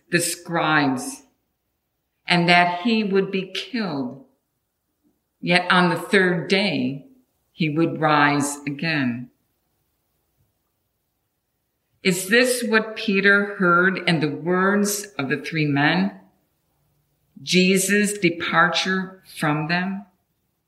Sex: female